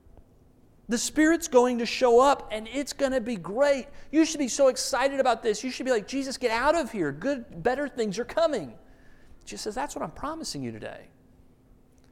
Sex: male